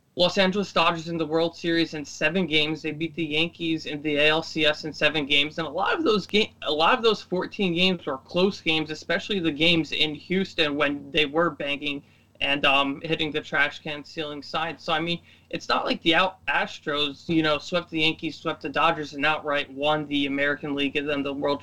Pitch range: 145-170 Hz